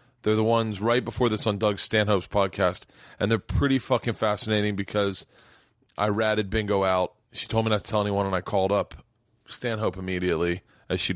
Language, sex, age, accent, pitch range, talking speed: English, male, 30-49, American, 105-130 Hz, 185 wpm